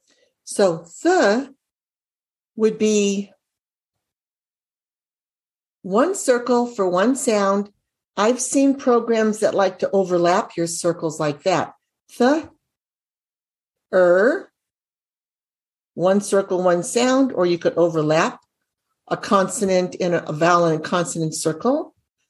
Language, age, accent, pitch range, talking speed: English, 60-79, American, 170-220 Hz, 110 wpm